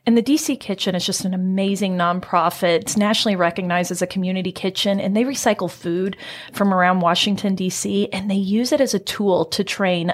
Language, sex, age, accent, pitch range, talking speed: English, female, 30-49, American, 185-230 Hz, 195 wpm